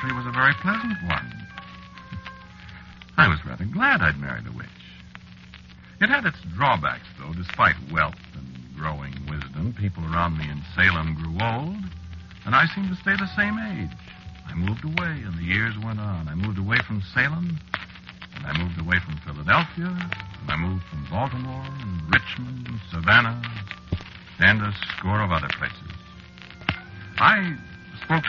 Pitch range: 85-125 Hz